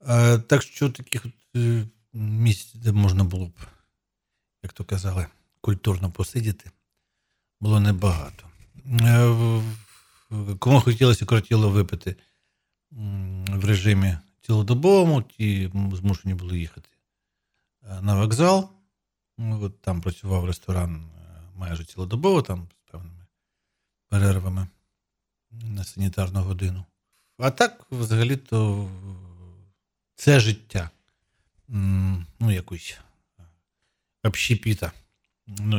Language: Ukrainian